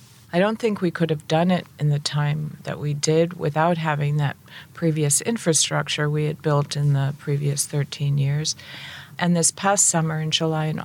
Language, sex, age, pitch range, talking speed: English, female, 40-59, 145-170 Hz, 190 wpm